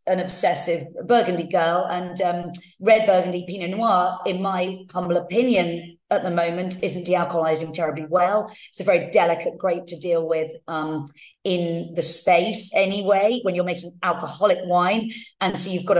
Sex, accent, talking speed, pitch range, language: female, British, 160 wpm, 170-215 Hz, English